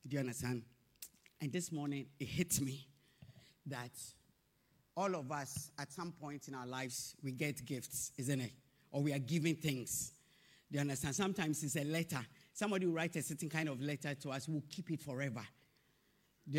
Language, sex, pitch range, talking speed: English, male, 145-205 Hz, 185 wpm